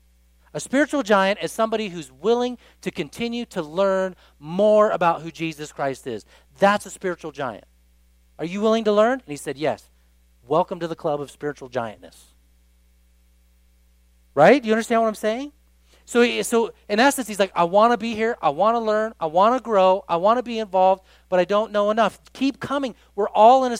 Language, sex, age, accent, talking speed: English, male, 40-59, American, 200 wpm